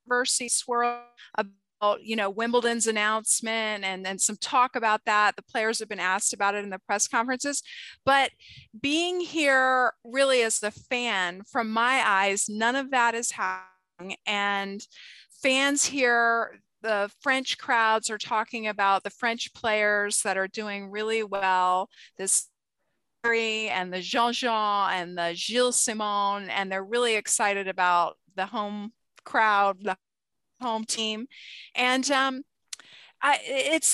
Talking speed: 135 wpm